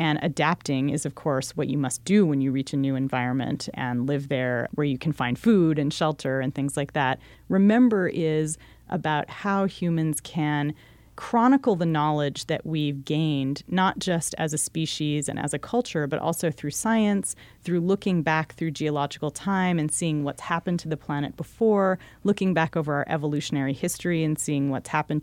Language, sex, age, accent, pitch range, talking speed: English, female, 30-49, American, 150-190 Hz, 185 wpm